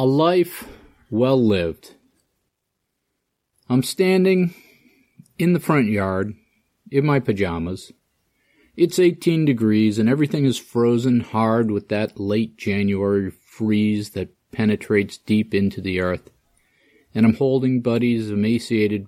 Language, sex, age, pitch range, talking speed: English, male, 40-59, 100-130 Hz, 115 wpm